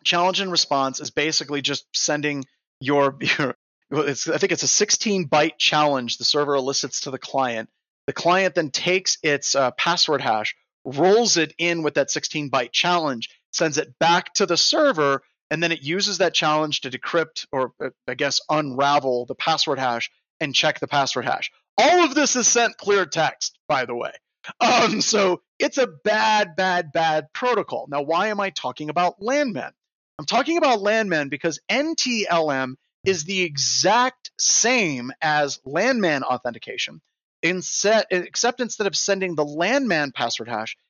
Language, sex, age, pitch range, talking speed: English, male, 30-49, 145-185 Hz, 160 wpm